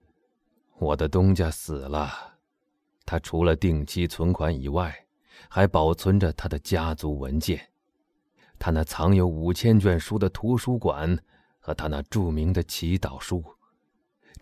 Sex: male